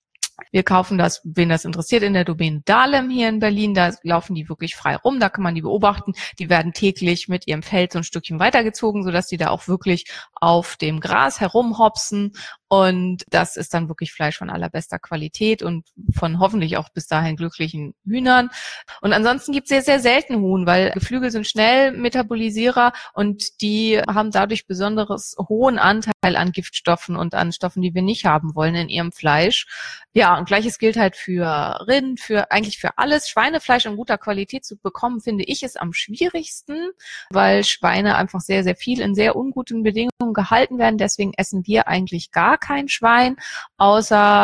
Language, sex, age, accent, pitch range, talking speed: German, female, 30-49, German, 175-230 Hz, 180 wpm